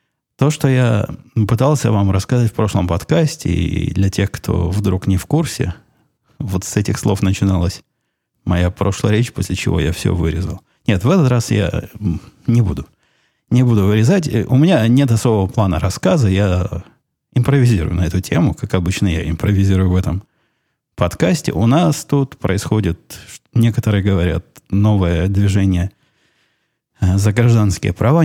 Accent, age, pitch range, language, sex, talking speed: native, 20-39, 95-115 Hz, Russian, male, 145 wpm